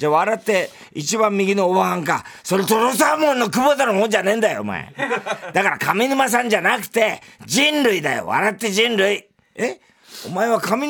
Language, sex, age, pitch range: Japanese, male, 40-59, 185-245 Hz